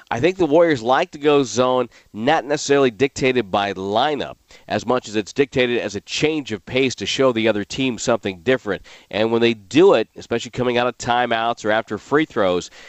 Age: 40-59